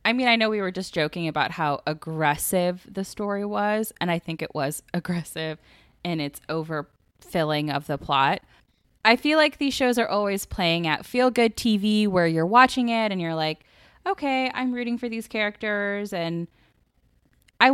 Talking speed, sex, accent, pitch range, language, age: 175 wpm, female, American, 165-230 Hz, English, 10-29